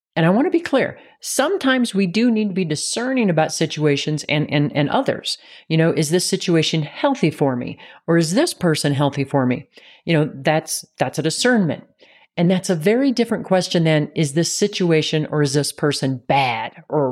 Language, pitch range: English, 145-195 Hz